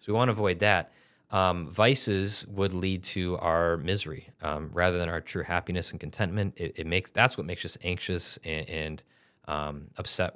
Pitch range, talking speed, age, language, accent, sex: 85-100 Hz, 185 wpm, 20-39, English, American, male